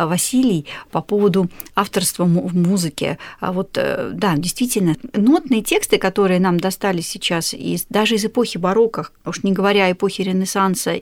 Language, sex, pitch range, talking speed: Russian, female, 190-230 Hz, 140 wpm